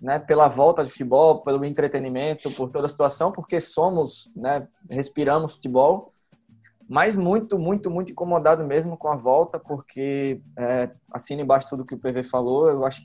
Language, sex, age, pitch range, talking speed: Portuguese, male, 20-39, 130-160 Hz, 165 wpm